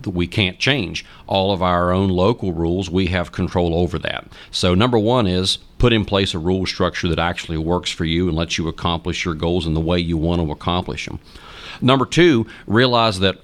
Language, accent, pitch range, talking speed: English, American, 85-100 Hz, 210 wpm